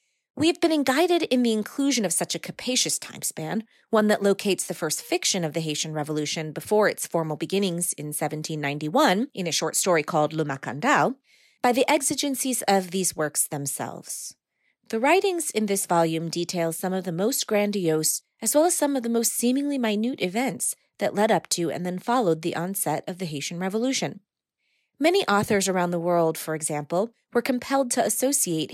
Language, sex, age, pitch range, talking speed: English, female, 30-49, 165-225 Hz, 180 wpm